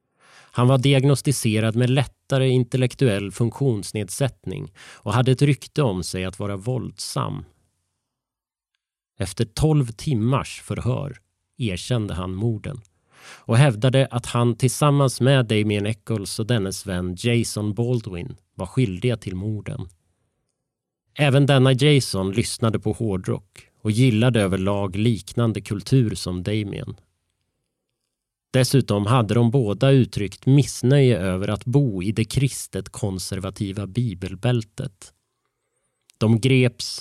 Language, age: Swedish, 30-49